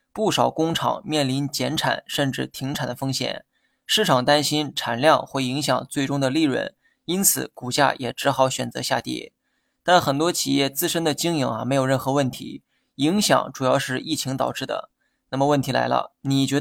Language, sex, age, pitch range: Chinese, male, 20-39, 130-150 Hz